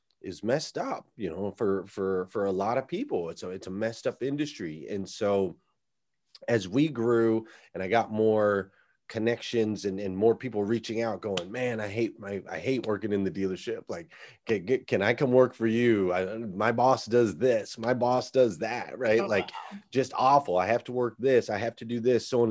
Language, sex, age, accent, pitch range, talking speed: English, male, 30-49, American, 95-120 Hz, 215 wpm